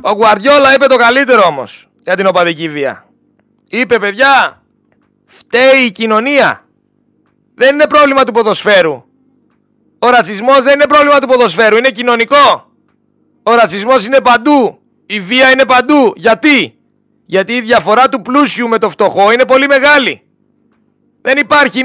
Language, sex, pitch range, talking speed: Greek, male, 225-270 Hz, 140 wpm